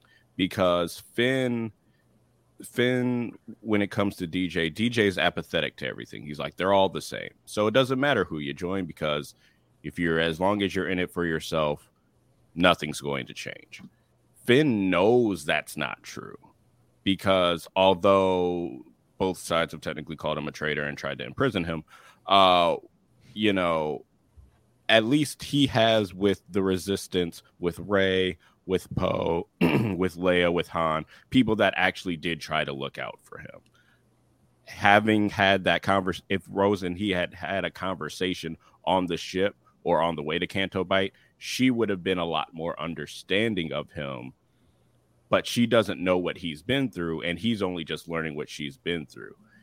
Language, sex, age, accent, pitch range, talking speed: English, male, 30-49, American, 80-105 Hz, 165 wpm